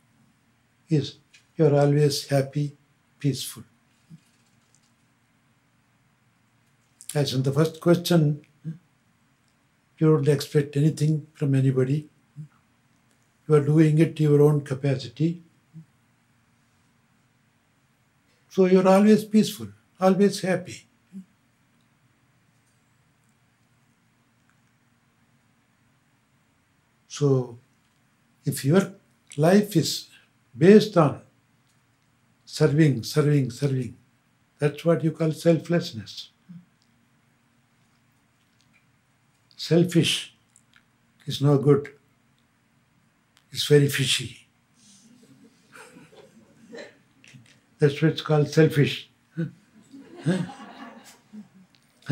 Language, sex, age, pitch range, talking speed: English, male, 60-79, 120-150 Hz, 65 wpm